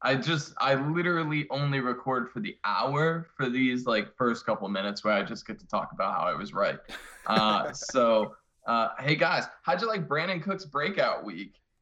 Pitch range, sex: 115-150 Hz, male